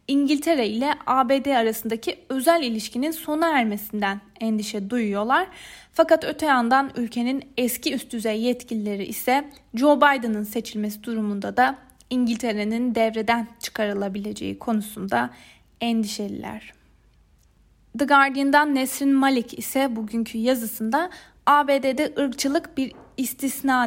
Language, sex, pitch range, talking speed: Turkish, female, 225-275 Hz, 100 wpm